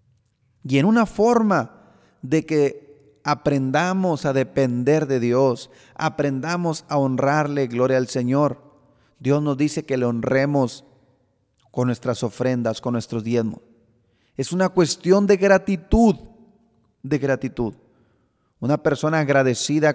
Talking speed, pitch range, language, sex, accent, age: 115 wpm, 125-155 Hz, Spanish, male, Mexican, 30-49